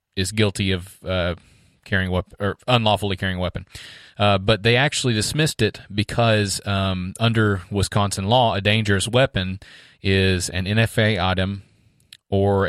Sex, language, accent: male, English, American